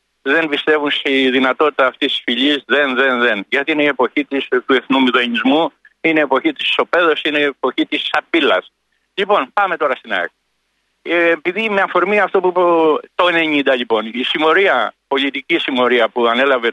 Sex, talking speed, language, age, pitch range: male, 165 wpm, Greek, 60-79, 135-210 Hz